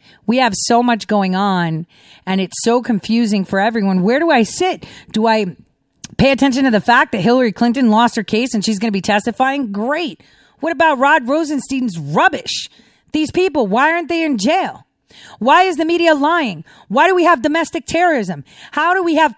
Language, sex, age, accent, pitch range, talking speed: English, female, 40-59, American, 215-320 Hz, 195 wpm